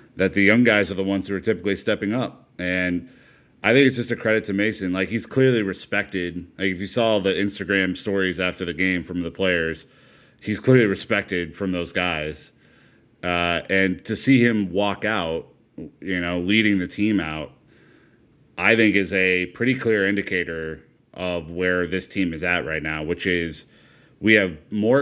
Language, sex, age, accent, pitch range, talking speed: English, male, 30-49, American, 90-105 Hz, 185 wpm